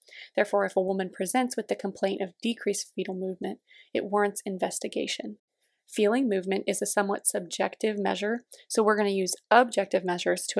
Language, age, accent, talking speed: English, 20-39, American, 170 wpm